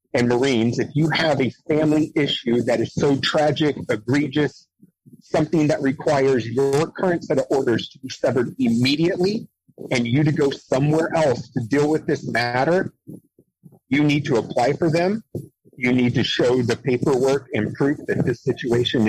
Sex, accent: male, American